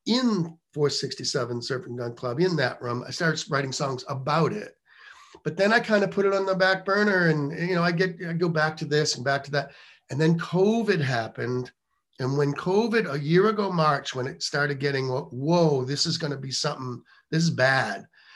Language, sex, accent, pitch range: English, male, American, 140-175 Hz